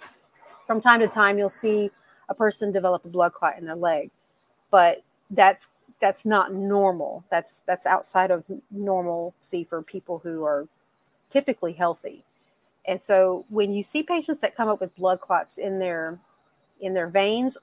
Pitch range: 175-210 Hz